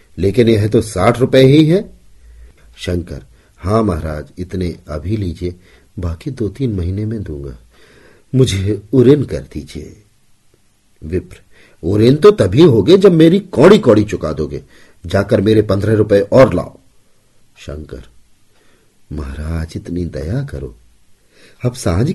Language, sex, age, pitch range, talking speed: Hindi, male, 50-69, 85-120 Hz, 125 wpm